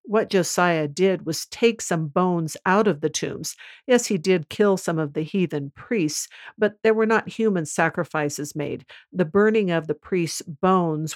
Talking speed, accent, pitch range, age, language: 175 wpm, American, 155-195 Hz, 50-69, English